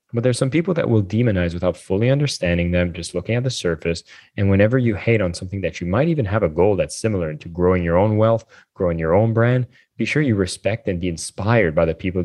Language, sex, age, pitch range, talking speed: English, male, 20-39, 85-100 Hz, 245 wpm